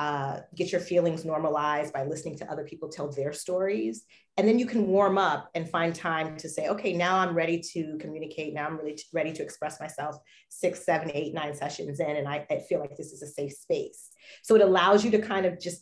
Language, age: English, 30-49